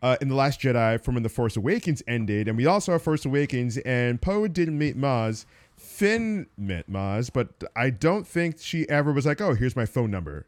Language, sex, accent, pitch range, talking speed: English, male, American, 130-180 Hz, 220 wpm